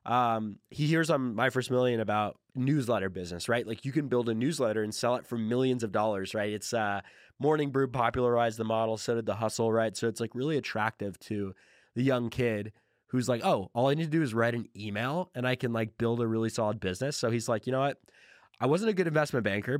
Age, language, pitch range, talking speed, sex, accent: 20-39, English, 110-135 Hz, 240 wpm, male, American